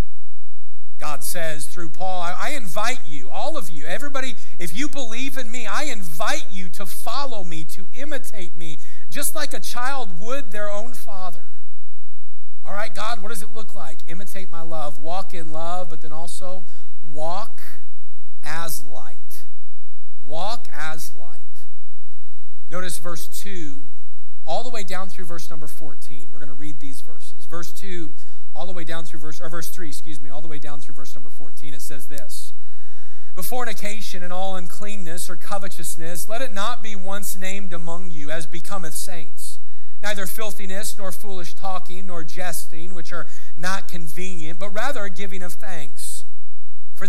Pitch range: 165-200 Hz